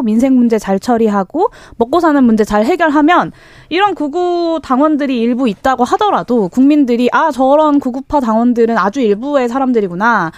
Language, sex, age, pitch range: Korean, female, 20-39, 220-295 Hz